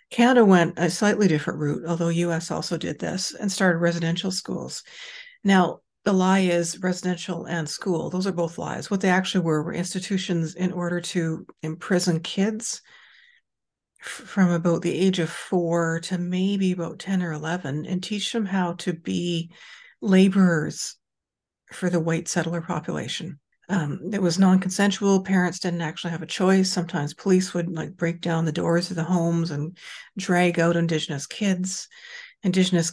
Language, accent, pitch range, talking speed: English, American, 170-190 Hz, 160 wpm